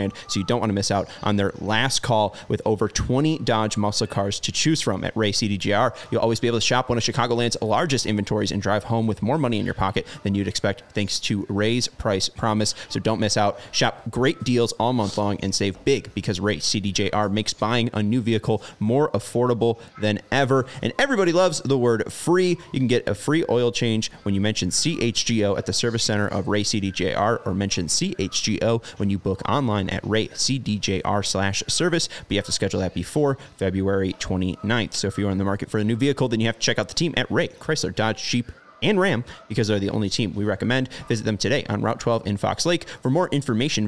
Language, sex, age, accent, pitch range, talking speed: English, male, 30-49, American, 100-125 Hz, 225 wpm